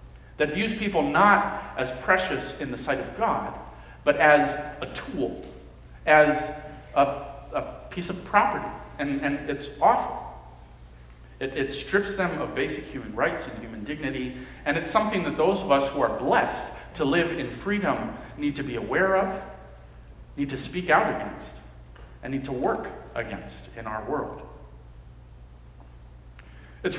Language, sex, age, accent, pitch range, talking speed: English, male, 40-59, American, 115-185 Hz, 155 wpm